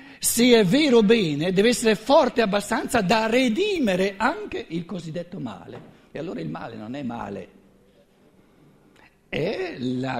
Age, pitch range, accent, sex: 60-79, 150-225 Hz, native, male